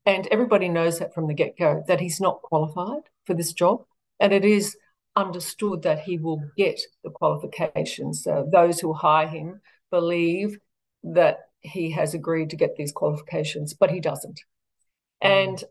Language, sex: English, female